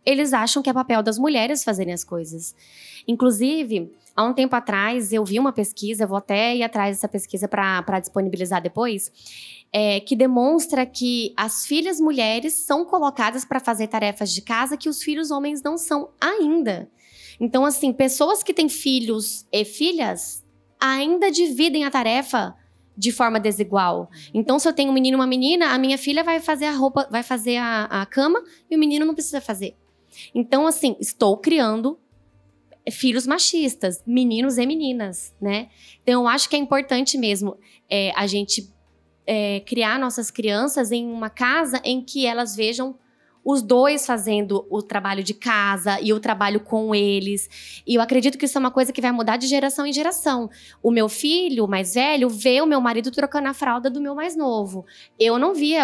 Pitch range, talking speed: 215-280 Hz, 180 wpm